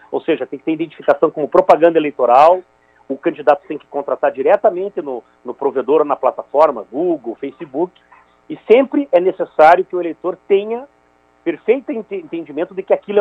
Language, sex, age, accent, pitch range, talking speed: Portuguese, male, 40-59, Brazilian, 135-195 Hz, 165 wpm